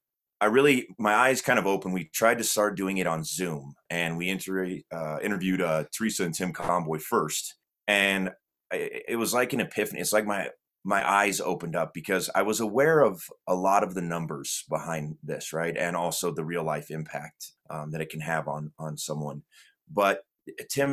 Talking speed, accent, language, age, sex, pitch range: 200 wpm, American, English, 30-49, male, 85-110 Hz